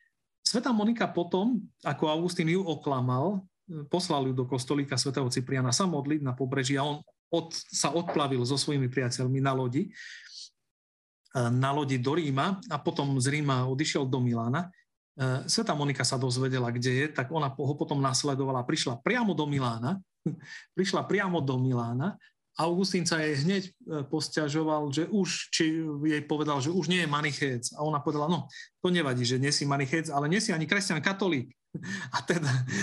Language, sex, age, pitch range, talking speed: Slovak, male, 40-59, 140-180 Hz, 165 wpm